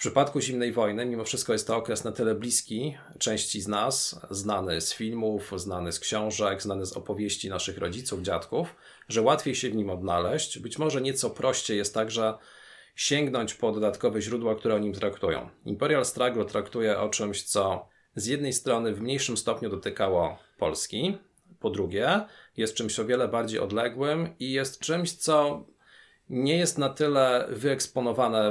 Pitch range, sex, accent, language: 105-130 Hz, male, native, Polish